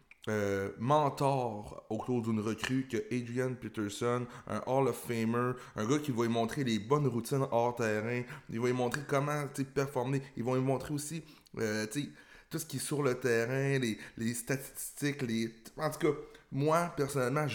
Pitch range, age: 115-135 Hz, 30-49